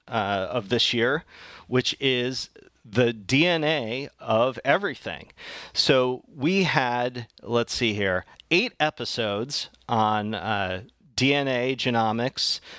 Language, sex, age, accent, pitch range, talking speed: English, male, 40-59, American, 105-130 Hz, 105 wpm